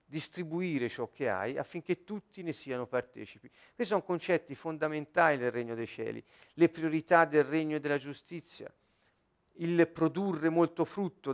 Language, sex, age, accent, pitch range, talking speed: Italian, male, 50-69, native, 130-175 Hz, 145 wpm